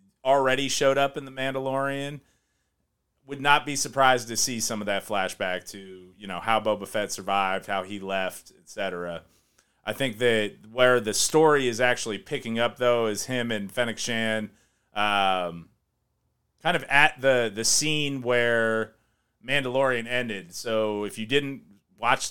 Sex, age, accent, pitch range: male, 30-49, American, 105-130 Hz